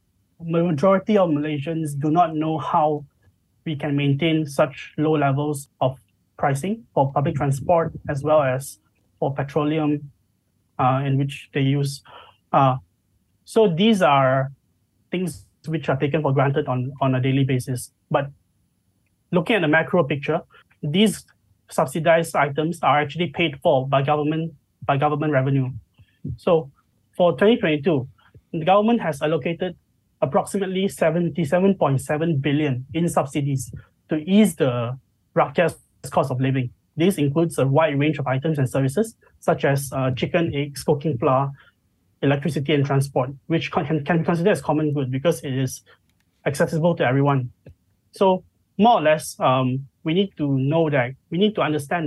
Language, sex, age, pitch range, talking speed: English, male, 20-39, 130-165 Hz, 145 wpm